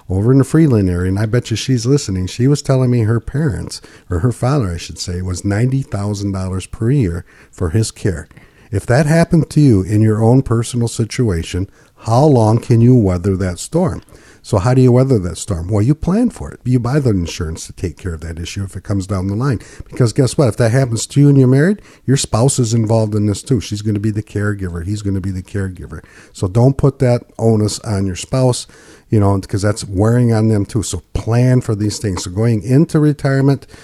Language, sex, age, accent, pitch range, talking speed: English, male, 50-69, American, 100-125 Hz, 230 wpm